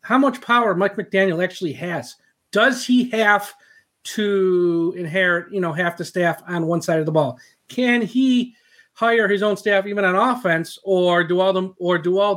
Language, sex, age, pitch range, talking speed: English, male, 40-59, 185-240 Hz, 190 wpm